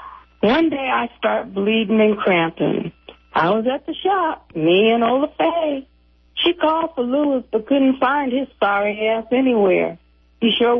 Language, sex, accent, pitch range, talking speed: English, female, American, 180-245 Hz, 155 wpm